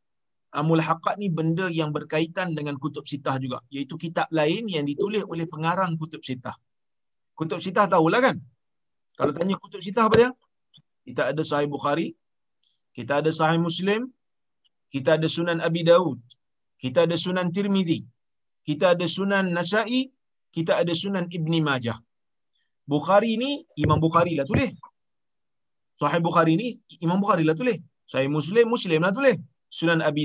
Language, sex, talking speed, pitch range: Malayalam, male, 150 wpm, 160-230 Hz